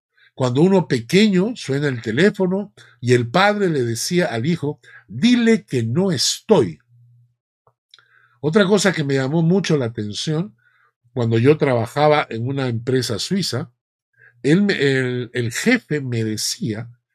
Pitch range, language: 120-180 Hz, Spanish